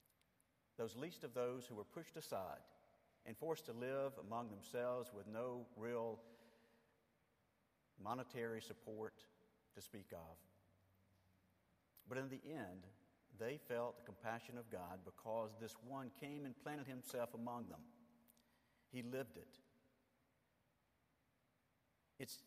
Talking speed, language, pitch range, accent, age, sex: 120 wpm, English, 105-125 Hz, American, 50-69, male